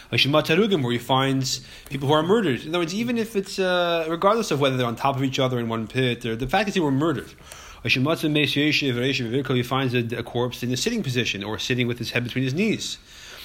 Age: 30-49